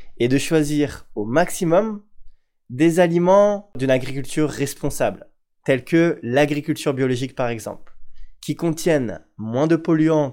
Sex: male